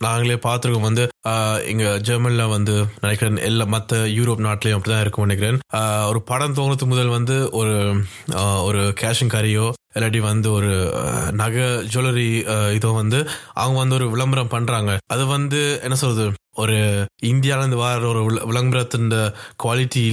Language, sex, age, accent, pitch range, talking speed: Tamil, male, 20-39, native, 105-130 Hz, 135 wpm